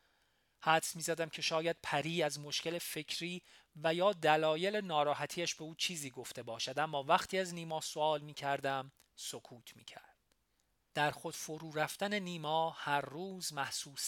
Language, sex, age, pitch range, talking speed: Persian, male, 40-59, 130-165 Hz, 140 wpm